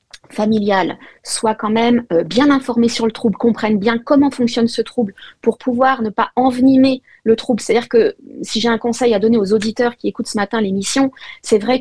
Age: 30-49